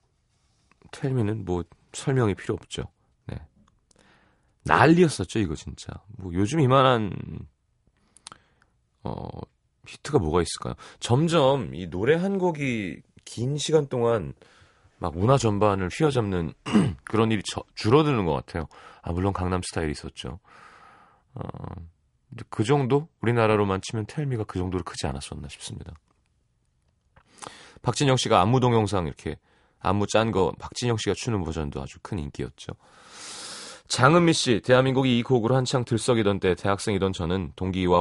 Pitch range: 90-120 Hz